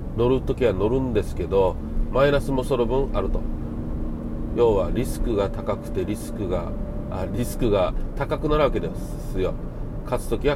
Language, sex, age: Japanese, male, 40-59